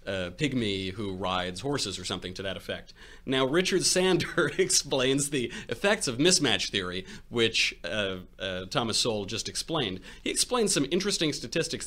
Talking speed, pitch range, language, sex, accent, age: 155 wpm, 95-140 Hz, English, male, American, 30-49